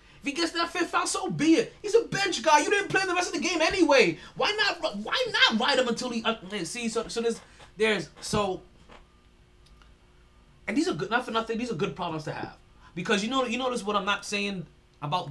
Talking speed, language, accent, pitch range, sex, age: 240 wpm, English, American, 165-245 Hz, male, 20-39